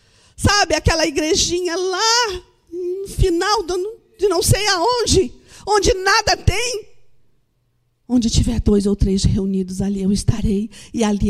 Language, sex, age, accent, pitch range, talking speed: Portuguese, female, 50-69, Brazilian, 210-265 Hz, 125 wpm